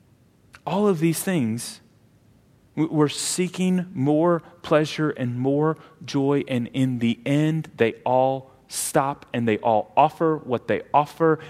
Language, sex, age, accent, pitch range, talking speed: English, male, 30-49, American, 115-175 Hz, 130 wpm